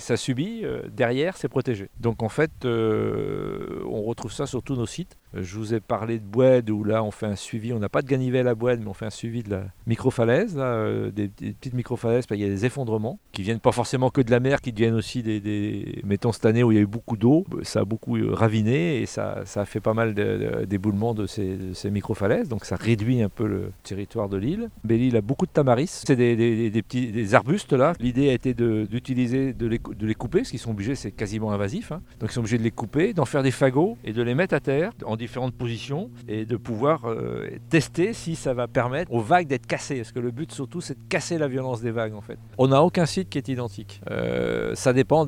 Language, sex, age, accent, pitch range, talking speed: French, male, 50-69, French, 110-130 Hz, 255 wpm